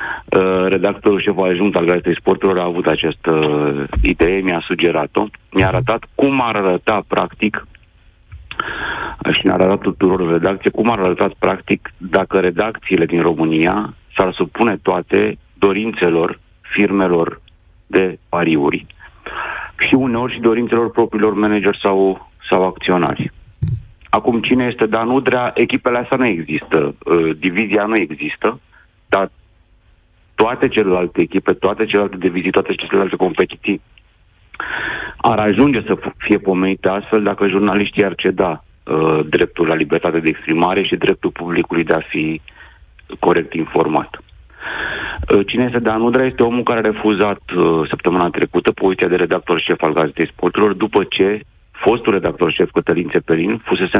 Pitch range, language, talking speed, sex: 90-110 Hz, Romanian, 135 wpm, male